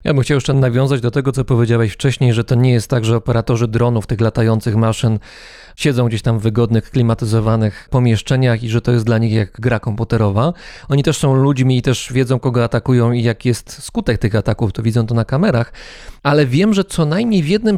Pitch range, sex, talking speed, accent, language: 115-145 Hz, male, 215 wpm, native, Polish